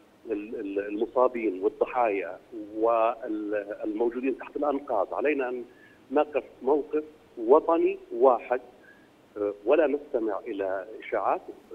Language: Arabic